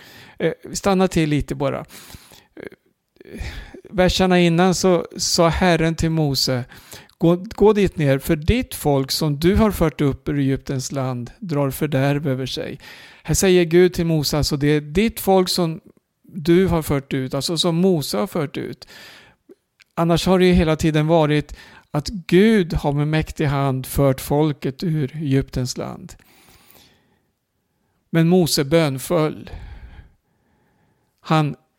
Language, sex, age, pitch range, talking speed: Swedish, male, 60-79, 140-170 Hz, 140 wpm